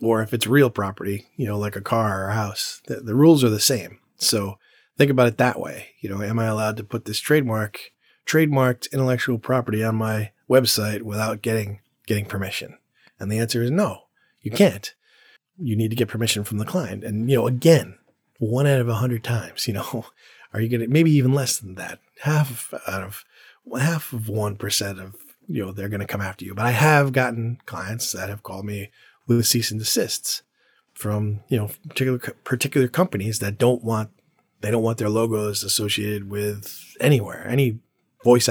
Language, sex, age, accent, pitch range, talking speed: English, male, 30-49, American, 105-130 Hz, 200 wpm